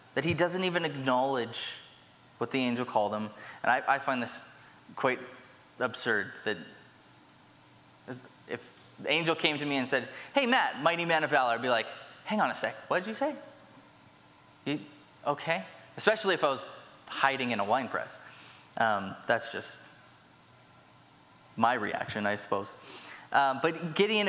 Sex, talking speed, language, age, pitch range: male, 160 wpm, English, 20-39, 130-175 Hz